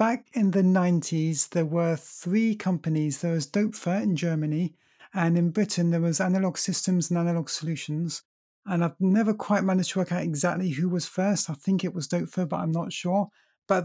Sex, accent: male, British